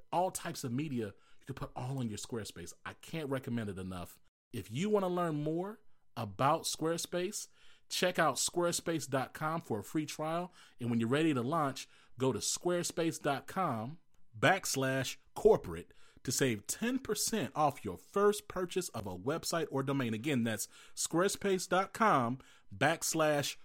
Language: English